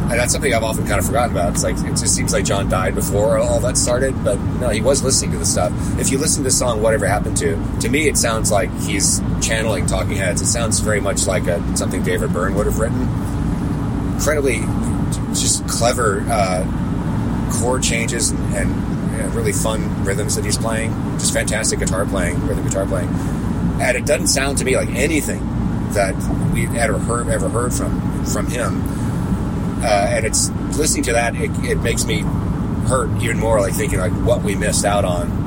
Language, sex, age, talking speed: English, male, 30-49, 200 wpm